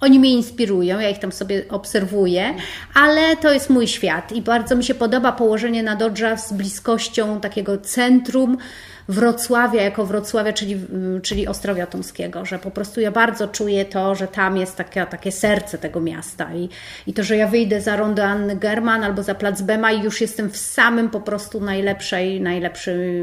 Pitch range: 195-230 Hz